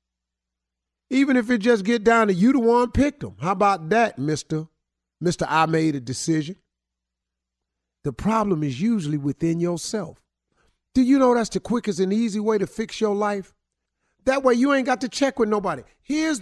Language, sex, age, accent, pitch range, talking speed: English, male, 50-69, American, 155-220 Hz, 180 wpm